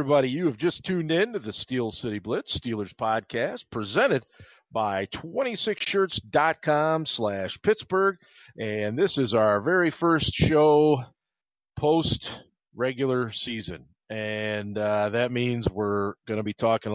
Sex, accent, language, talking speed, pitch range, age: male, American, English, 140 wpm, 100-130 Hz, 40-59